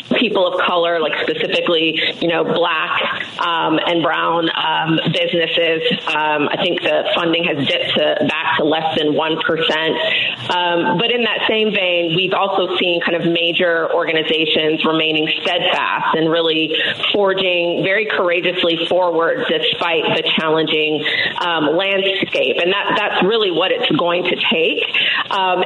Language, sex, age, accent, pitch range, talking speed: English, female, 30-49, American, 165-200 Hz, 140 wpm